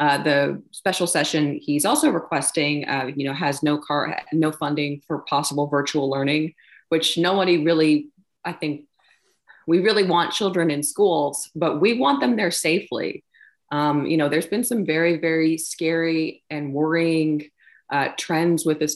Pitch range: 145-165 Hz